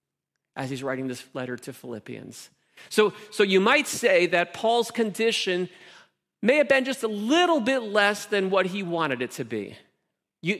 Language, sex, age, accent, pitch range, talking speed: English, male, 40-59, American, 140-200 Hz, 175 wpm